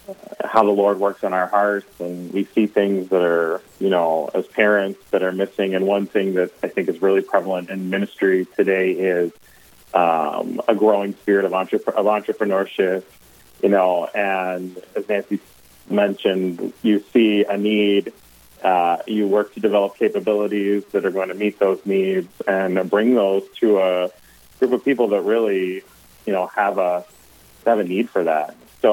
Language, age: English, 30-49